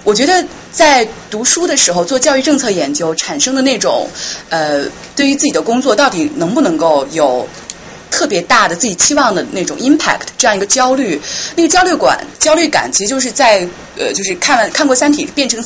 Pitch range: 220-310 Hz